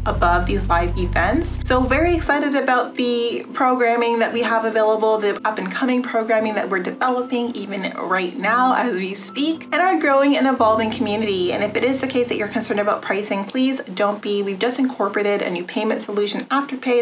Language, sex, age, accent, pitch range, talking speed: English, female, 30-49, American, 215-265 Hz, 200 wpm